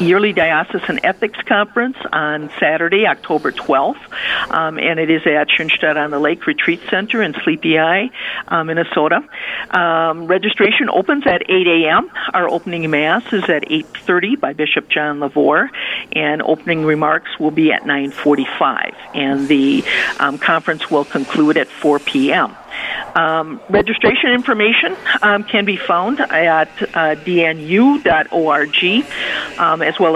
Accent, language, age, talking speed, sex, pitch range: American, English, 50-69, 130 wpm, female, 155-210 Hz